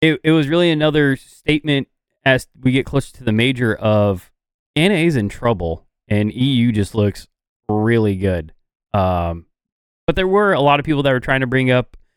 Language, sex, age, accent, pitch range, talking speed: English, male, 20-39, American, 105-125 Hz, 185 wpm